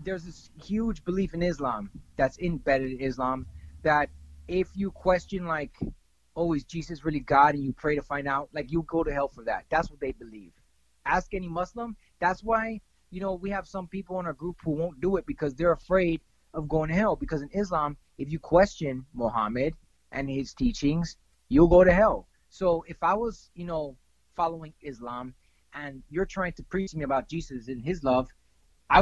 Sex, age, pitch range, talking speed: male, 20-39, 145-190 Hz, 200 wpm